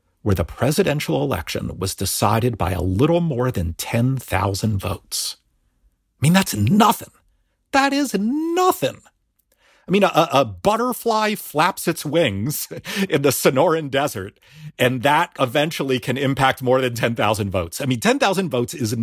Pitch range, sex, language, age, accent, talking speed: 105-160 Hz, male, English, 40-59, American, 145 wpm